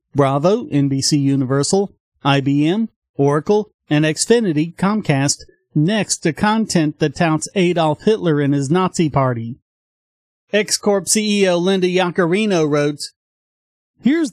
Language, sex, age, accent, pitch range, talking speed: English, male, 40-59, American, 150-210 Hz, 105 wpm